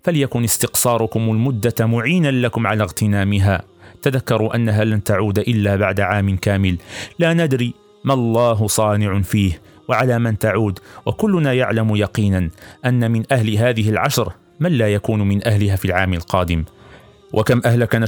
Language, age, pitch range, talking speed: Arabic, 40-59, 105-125 Hz, 140 wpm